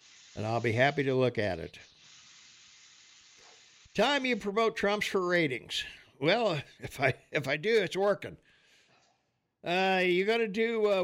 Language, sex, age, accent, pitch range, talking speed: English, male, 60-79, American, 150-210 Hz, 150 wpm